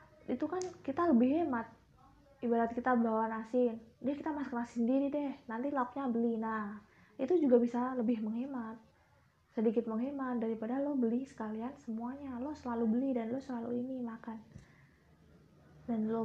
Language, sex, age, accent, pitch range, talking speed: Indonesian, female, 20-39, native, 220-250 Hz, 150 wpm